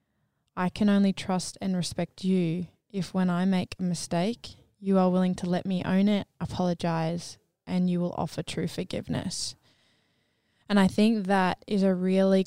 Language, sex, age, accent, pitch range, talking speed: English, female, 10-29, Australian, 175-195 Hz, 170 wpm